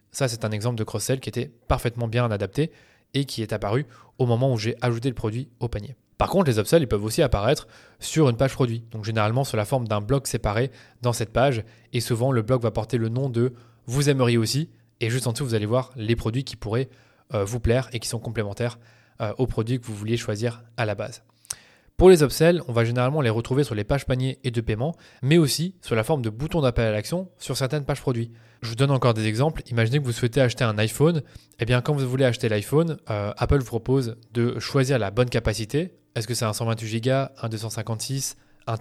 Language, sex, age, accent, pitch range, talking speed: French, male, 20-39, French, 110-135 Hz, 235 wpm